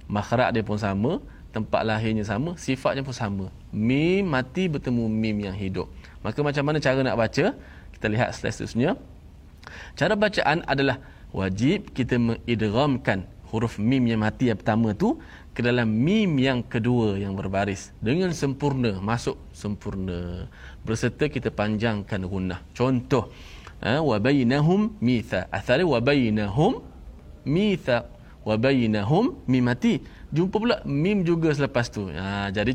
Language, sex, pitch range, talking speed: Malayalam, male, 100-135 Hz, 135 wpm